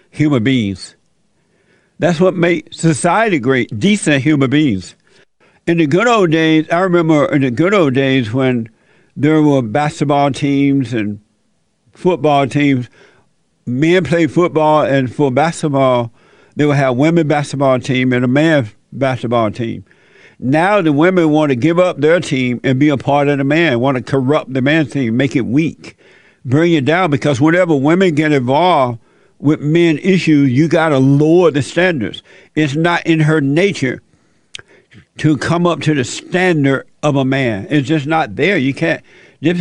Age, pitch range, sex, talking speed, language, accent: 60-79, 135-160 Hz, male, 165 wpm, English, American